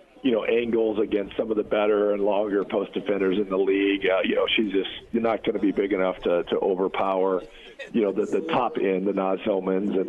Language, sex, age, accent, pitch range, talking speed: English, male, 40-59, American, 95-120 Hz, 240 wpm